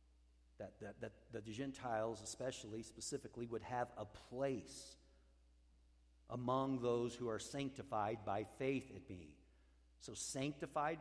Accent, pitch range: American, 95-135 Hz